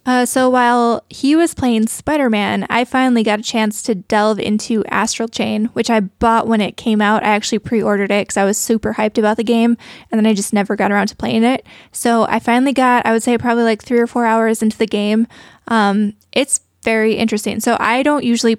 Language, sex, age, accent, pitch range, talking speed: English, female, 10-29, American, 215-235 Hz, 225 wpm